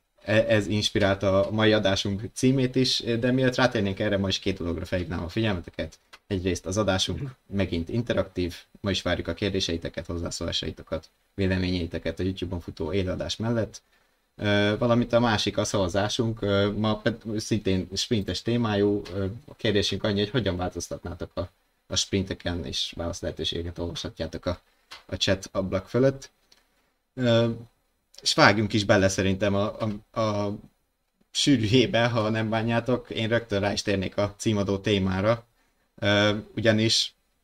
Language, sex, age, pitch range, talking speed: Hungarian, male, 20-39, 95-110 Hz, 130 wpm